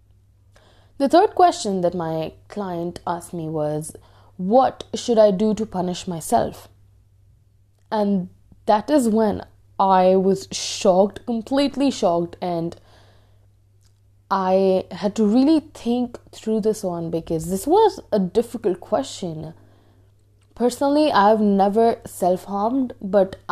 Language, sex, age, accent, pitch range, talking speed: Hindi, female, 20-39, native, 160-225 Hz, 115 wpm